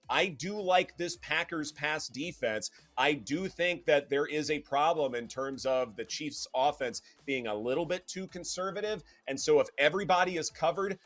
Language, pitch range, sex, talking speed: English, 125-165 Hz, male, 180 wpm